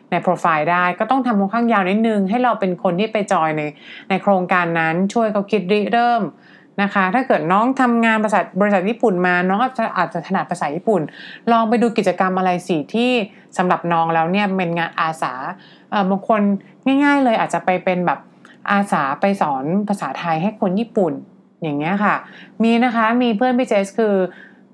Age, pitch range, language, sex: 30-49, 170-215 Hz, English, female